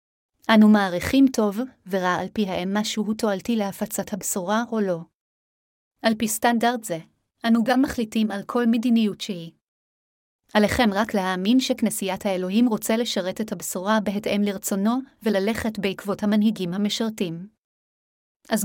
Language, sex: Hebrew, female